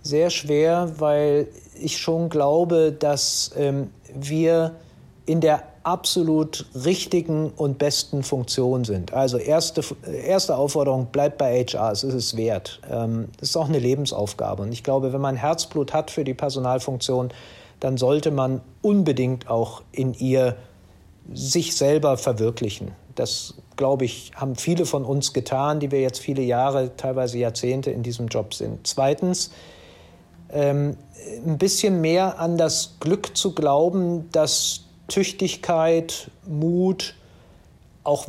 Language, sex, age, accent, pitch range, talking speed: German, male, 50-69, German, 130-165 Hz, 135 wpm